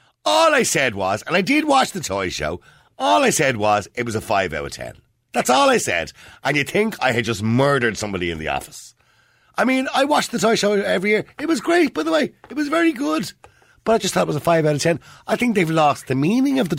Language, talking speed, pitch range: English, 270 wpm, 95-140 Hz